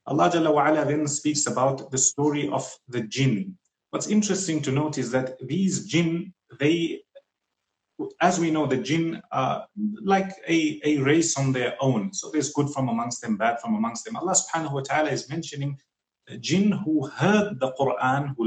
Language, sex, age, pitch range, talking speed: English, male, 30-49, 130-170 Hz, 170 wpm